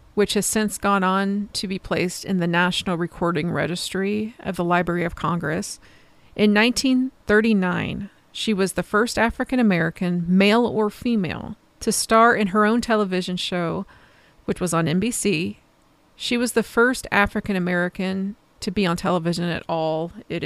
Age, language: 40-59, English